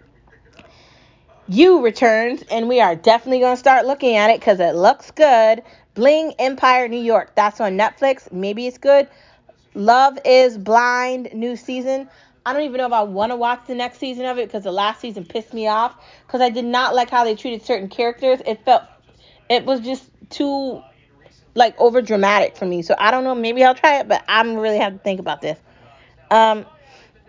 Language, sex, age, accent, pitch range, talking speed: English, female, 20-39, American, 200-255 Hz, 200 wpm